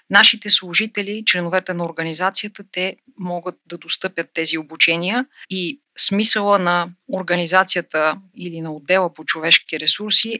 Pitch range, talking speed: 170-200 Hz, 120 wpm